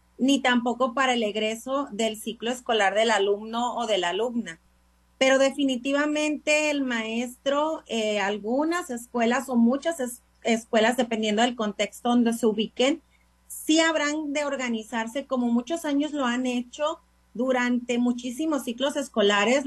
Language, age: Spanish, 30-49